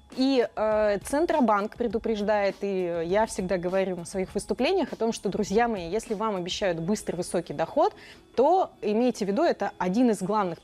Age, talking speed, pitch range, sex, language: 20-39, 170 wpm, 200-255 Hz, female, Russian